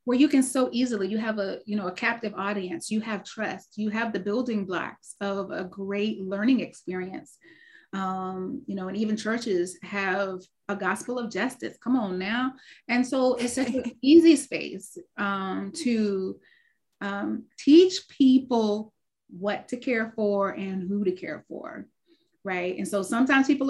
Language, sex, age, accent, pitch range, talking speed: English, female, 30-49, American, 195-245 Hz, 165 wpm